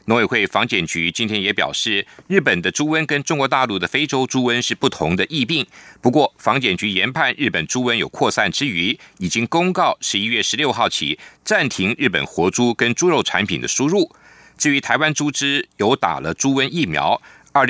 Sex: male